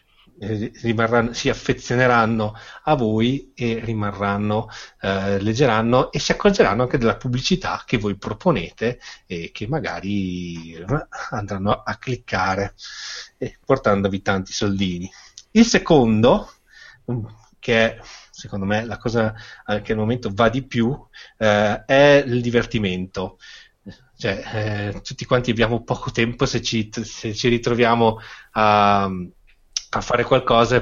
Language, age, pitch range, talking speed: Italian, 30-49, 100-125 Hz, 115 wpm